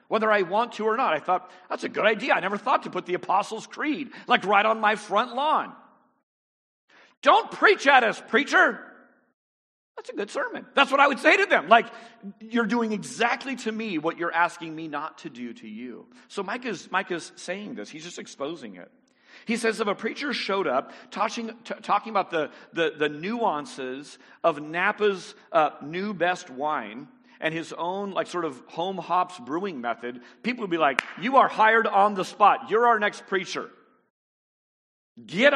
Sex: male